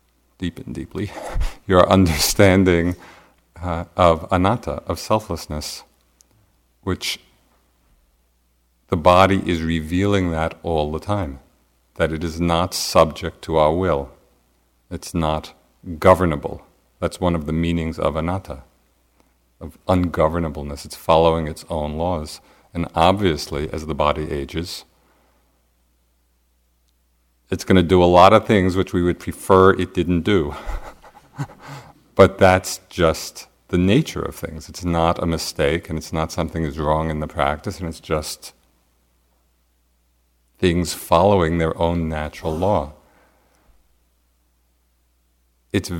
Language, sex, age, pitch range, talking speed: English, male, 50-69, 65-90 Hz, 125 wpm